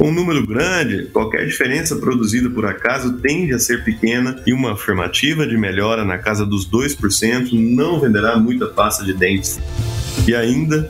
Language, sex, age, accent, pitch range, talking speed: Portuguese, male, 20-39, Brazilian, 105-140 Hz, 165 wpm